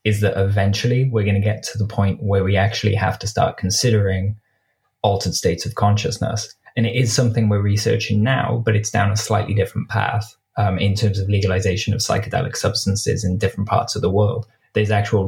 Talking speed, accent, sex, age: 200 wpm, British, male, 20-39